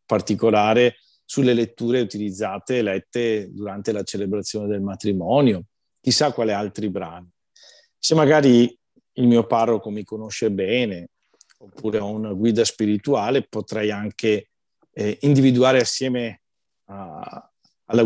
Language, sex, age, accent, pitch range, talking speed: Italian, male, 50-69, native, 100-125 Hz, 115 wpm